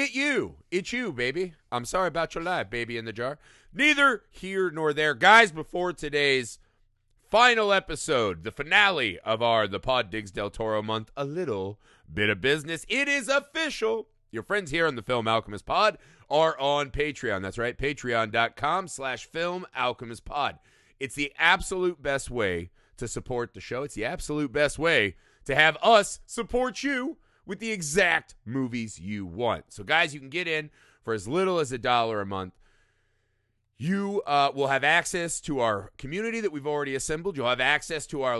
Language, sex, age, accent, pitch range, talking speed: English, male, 30-49, American, 115-175 Hz, 180 wpm